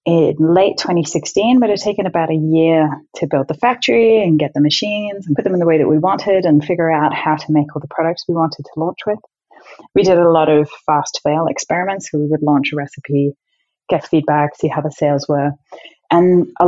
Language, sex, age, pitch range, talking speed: English, female, 20-39, 150-185 Hz, 225 wpm